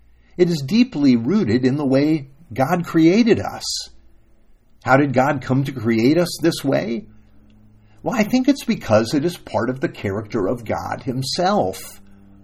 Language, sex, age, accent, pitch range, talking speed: English, male, 50-69, American, 100-145 Hz, 160 wpm